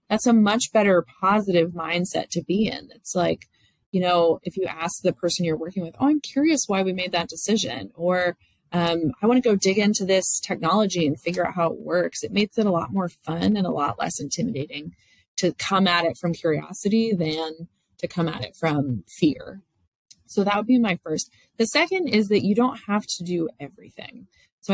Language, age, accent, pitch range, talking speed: English, 30-49, American, 160-200 Hz, 210 wpm